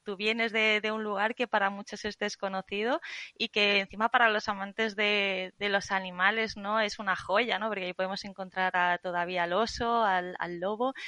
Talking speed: 200 wpm